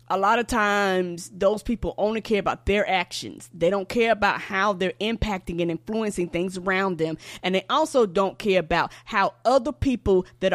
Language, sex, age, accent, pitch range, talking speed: English, female, 20-39, American, 180-225 Hz, 190 wpm